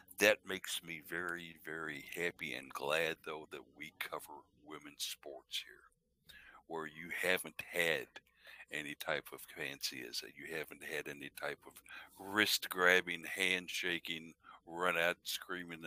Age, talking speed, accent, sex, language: 60-79, 140 wpm, American, male, English